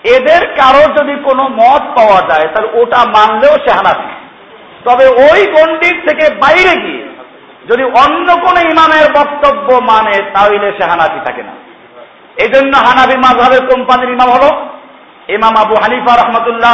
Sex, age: male, 50-69